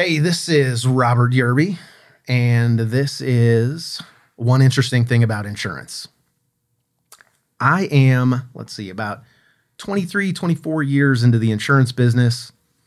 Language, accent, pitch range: English, American, 110-135 Hz